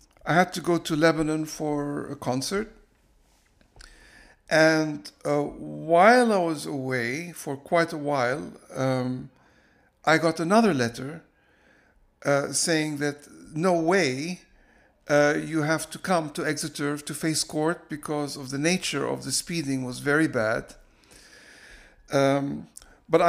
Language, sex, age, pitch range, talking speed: English, male, 60-79, 135-165 Hz, 130 wpm